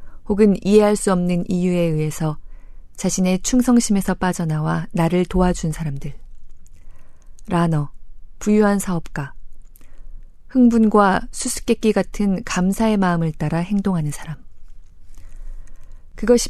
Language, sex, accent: Korean, female, native